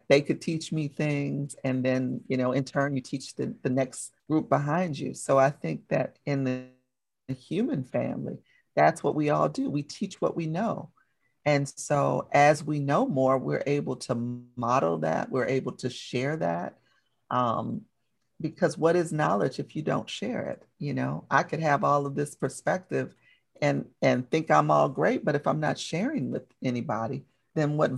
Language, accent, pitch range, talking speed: English, American, 130-150 Hz, 185 wpm